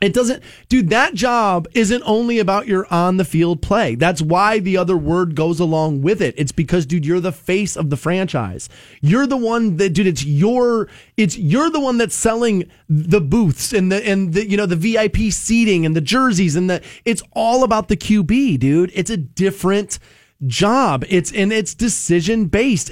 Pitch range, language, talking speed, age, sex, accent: 175-235 Hz, English, 195 wpm, 30-49, male, American